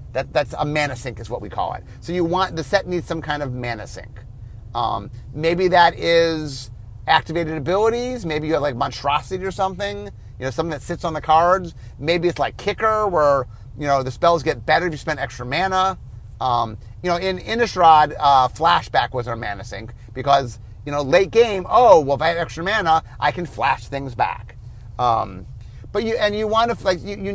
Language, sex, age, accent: English, male, 30-49, American